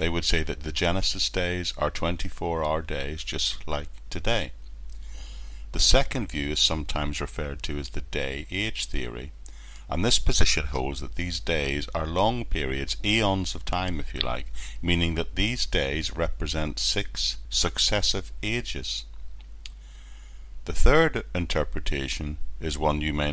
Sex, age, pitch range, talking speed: male, 60-79, 65-90 Hz, 140 wpm